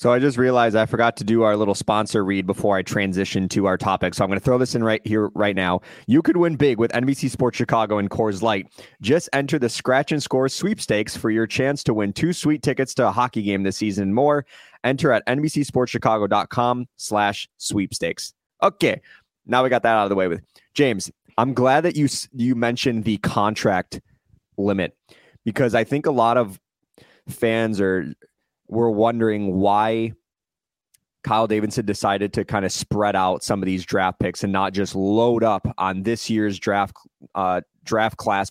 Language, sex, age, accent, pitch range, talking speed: English, male, 20-39, American, 100-125 Hz, 195 wpm